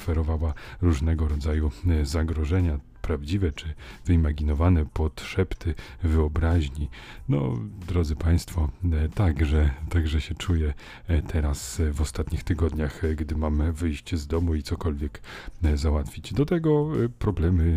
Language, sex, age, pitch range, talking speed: Polish, male, 40-59, 80-95 Hz, 110 wpm